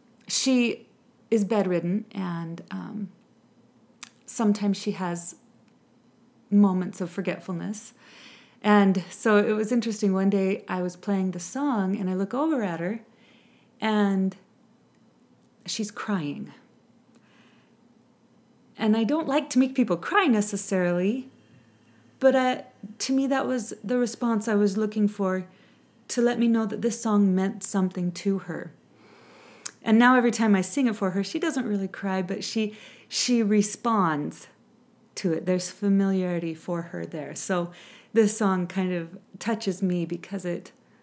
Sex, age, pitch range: female, 30-49, 190-240 Hz